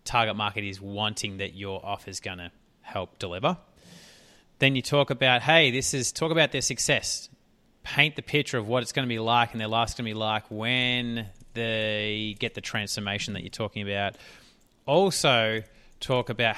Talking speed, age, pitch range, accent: 190 wpm, 30-49, 105-130 Hz, Australian